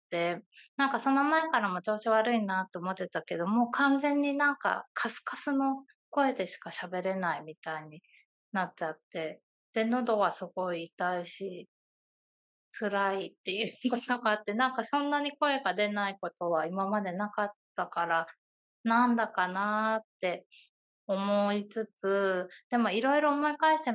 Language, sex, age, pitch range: Japanese, female, 20-39, 185-245 Hz